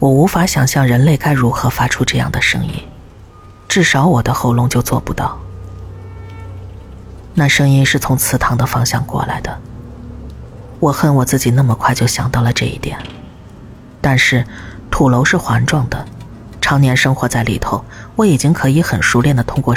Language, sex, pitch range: Chinese, female, 115-135 Hz